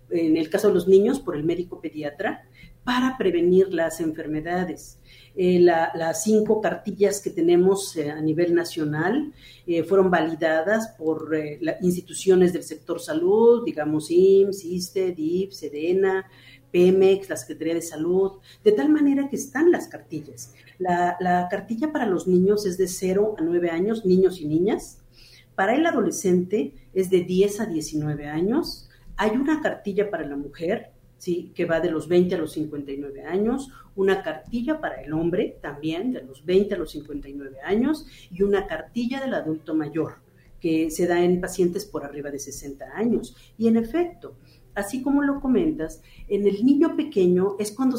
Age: 50-69